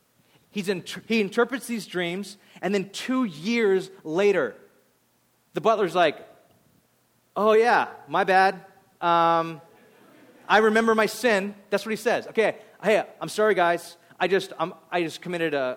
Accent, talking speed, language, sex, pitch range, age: American, 145 wpm, English, male, 150-200 Hz, 30-49